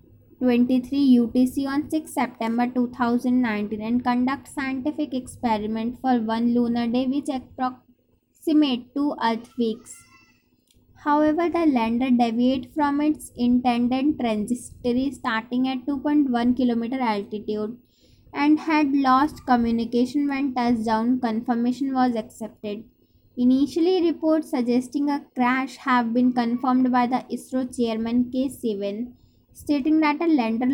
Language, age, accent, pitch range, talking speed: English, 20-39, Indian, 235-275 Hz, 115 wpm